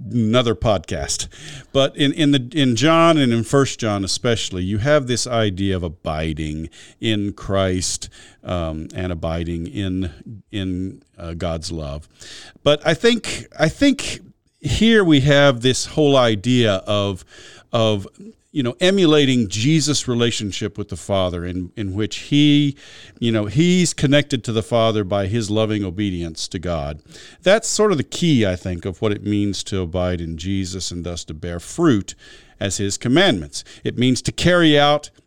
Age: 50-69